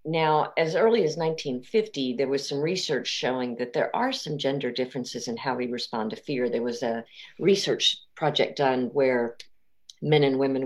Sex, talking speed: female, 180 wpm